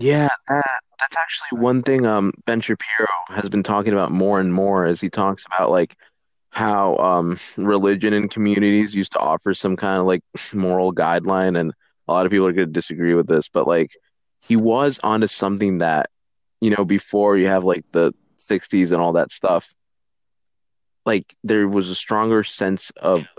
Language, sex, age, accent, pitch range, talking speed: English, male, 20-39, American, 90-105 Hz, 180 wpm